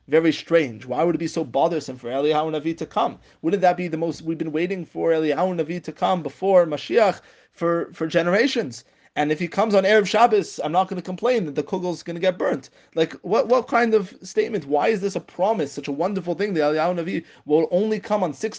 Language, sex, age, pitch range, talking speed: English, male, 30-49, 150-195 Hz, 240 wpm